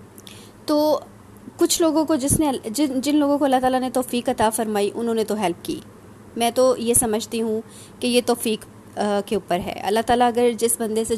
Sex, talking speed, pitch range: female, 200 wpm, 220-270 Hz